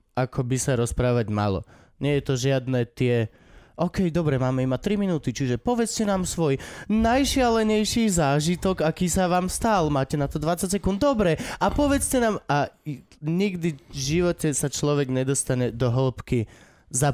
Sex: male